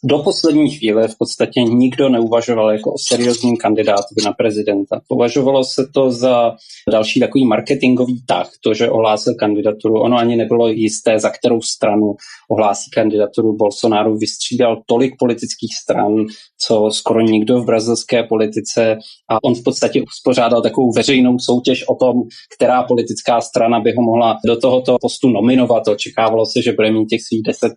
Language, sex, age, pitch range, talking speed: Czech, male, 20-39, 110-130 Hz, 155 wpm